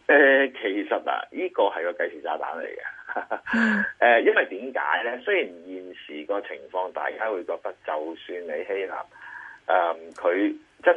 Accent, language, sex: native, Chinese, male